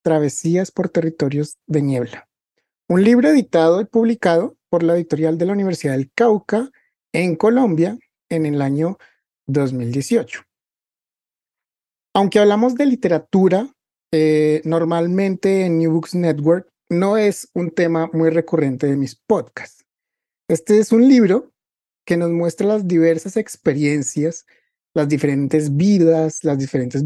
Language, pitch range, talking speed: Spanish, 155-195 Hz, 130 wpm